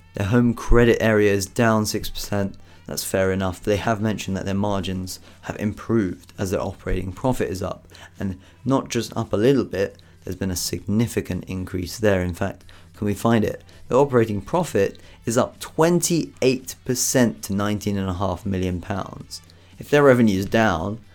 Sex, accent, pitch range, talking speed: male, British, 95-120 Hz, 165 wpm